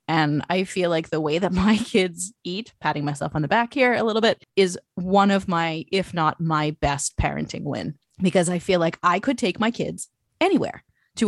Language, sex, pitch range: English, female, 155-200 Hz